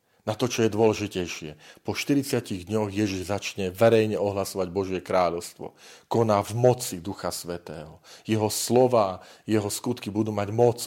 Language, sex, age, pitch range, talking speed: Slovak, male, 40-59, 95-120 Hz, 145 wpm